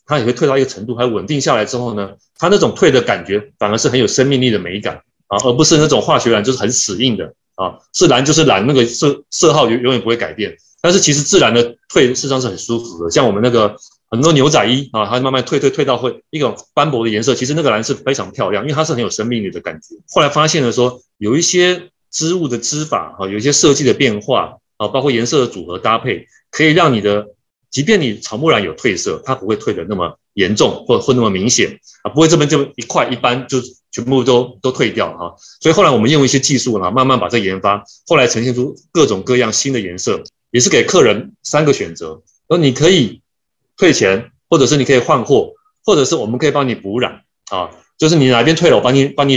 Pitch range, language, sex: 115-150 Hz, Chinese, male